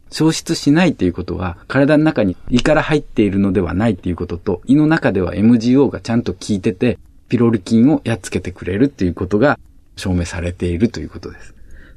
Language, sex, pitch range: Japanese, male, 90-135 Hz